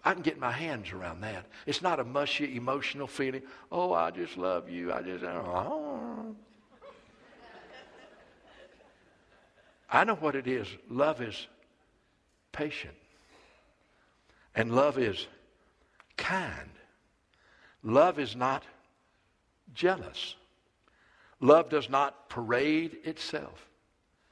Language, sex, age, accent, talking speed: English, male, 60-79, American, 105 wpm